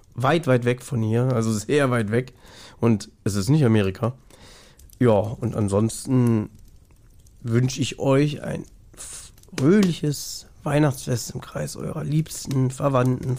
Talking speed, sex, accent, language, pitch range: 125 wpm, male, German, German, 110-135 Hz